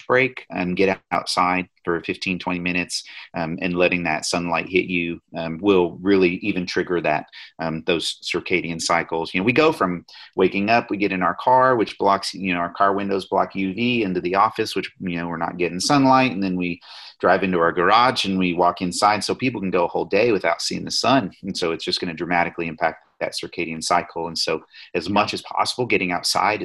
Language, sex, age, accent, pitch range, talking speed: English, male, 30-49, American, 90-115 Hz, 220 wpm